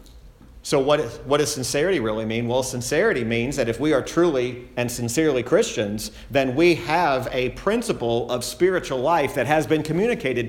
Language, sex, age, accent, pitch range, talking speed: English, male, 40-59, American, 115-185 Hz, 170 wpm